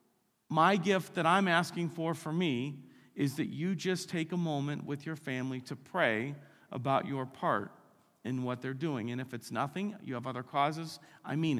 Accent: American